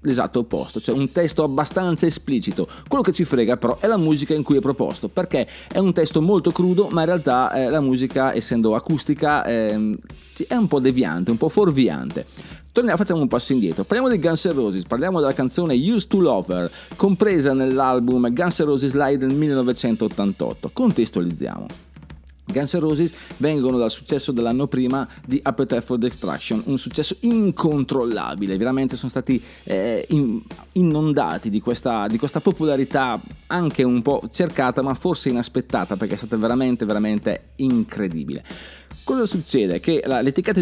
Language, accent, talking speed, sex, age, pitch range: Italian, native, 160 wpm, male, 30-49, 120-165 Hz